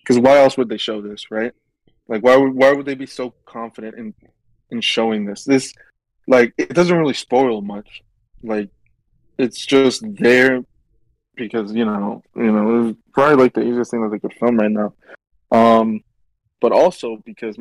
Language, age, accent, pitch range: English, 20-39, American, 110-130 Hz